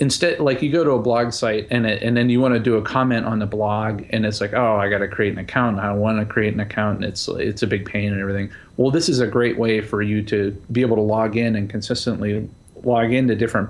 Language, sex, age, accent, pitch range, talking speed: English, male, 30-49, American, 105-120 Hz, 280 wpm